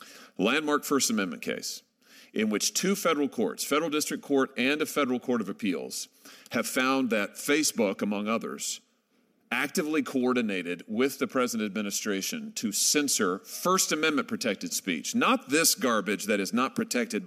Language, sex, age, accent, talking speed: English, male, 40-59, American, 145 wpm